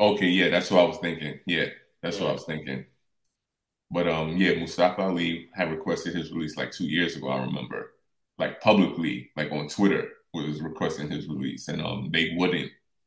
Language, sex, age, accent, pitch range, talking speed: English, male, 20-39, American, 80-95 Hz, 190 wpm